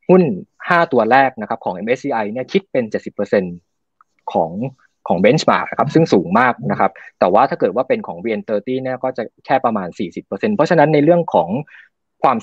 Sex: male